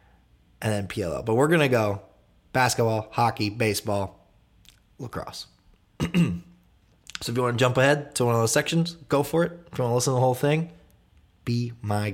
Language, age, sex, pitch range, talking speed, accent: English, 20-39, male, 100-130 Hz, 190 wpm, American